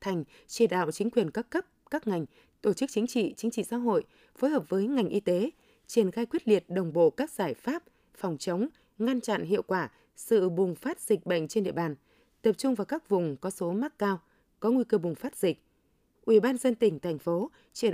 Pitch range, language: 185-235 Hz, Vietnamese